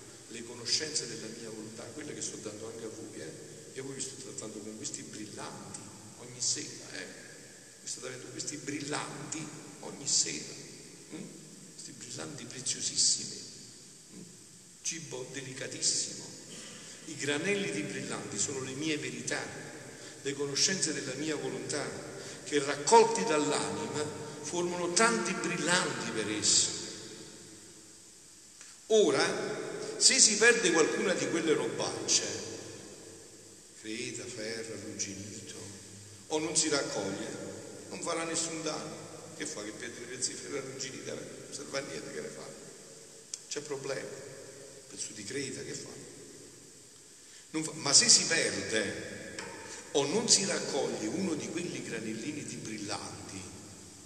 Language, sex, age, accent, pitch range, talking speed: Italian, male, 50-69, native, 110-155 Hz, 130 wpm